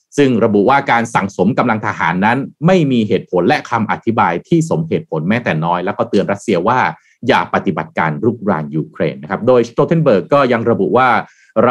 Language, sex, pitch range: Thai, male, 110-165 Hz